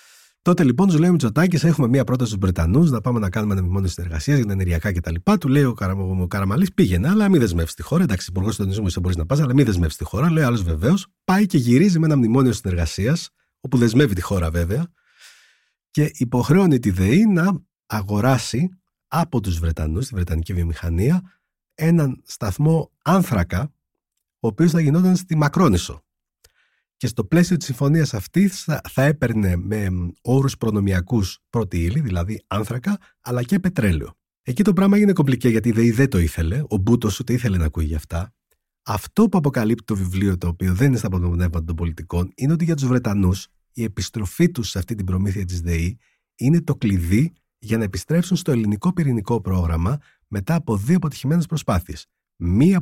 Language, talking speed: Greek, 180 wpm